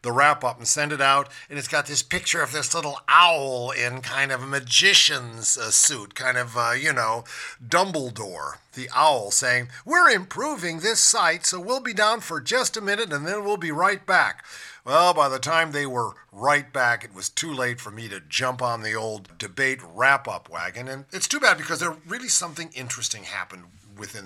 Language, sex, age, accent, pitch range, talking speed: English, male, 50-69, American, 125-170 Hz, 205 wpm